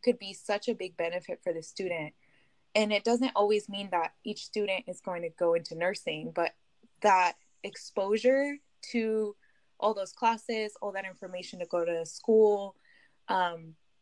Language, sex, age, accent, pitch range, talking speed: English, female, 20-39, American, 175-220 Hz, 165 wpm